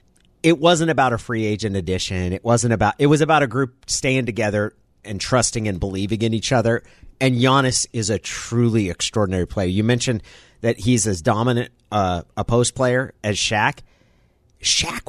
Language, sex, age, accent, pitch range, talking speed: English, male, 30-49, American, 95-120 Hz, 175 wpm